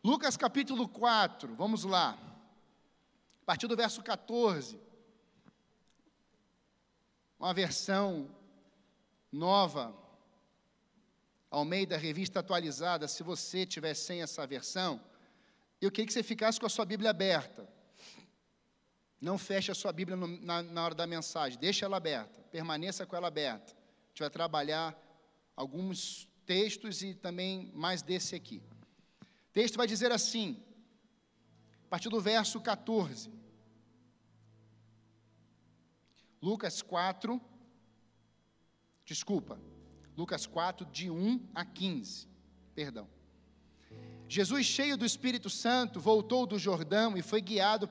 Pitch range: 170-225 Hz